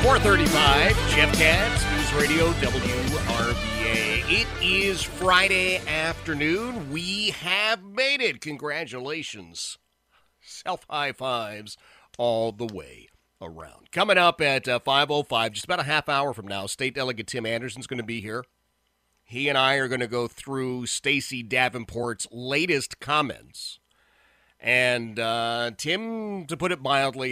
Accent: American